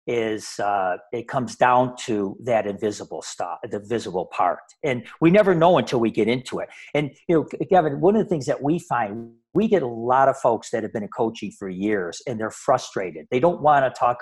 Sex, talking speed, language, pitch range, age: male, 220 wpm, English, 125-180 Hz, 50-69